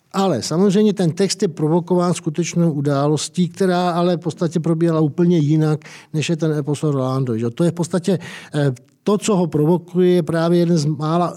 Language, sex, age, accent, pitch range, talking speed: Czech, male, 50-69, native, 140-175 Hz, 175 wpm